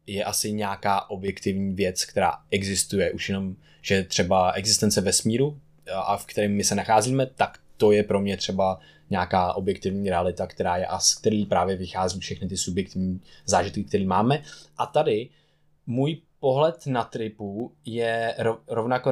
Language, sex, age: Czech, male, 20-39